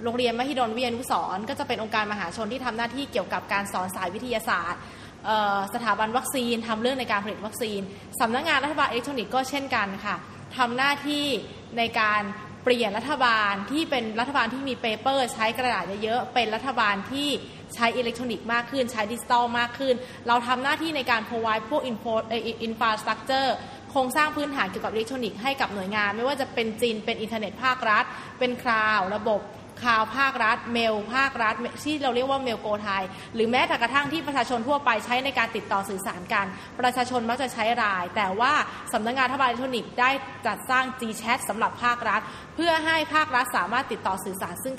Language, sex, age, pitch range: Thai, female, 20-39, 220-260 Hz